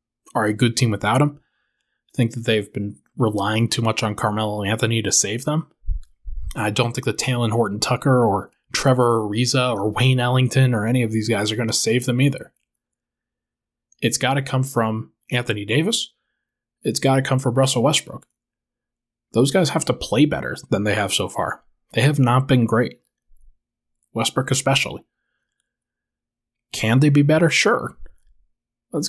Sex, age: male, 20-39